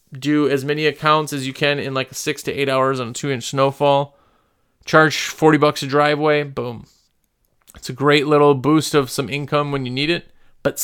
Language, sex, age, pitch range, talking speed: English, male, 30-49, 130-170 Hz, 200 wpm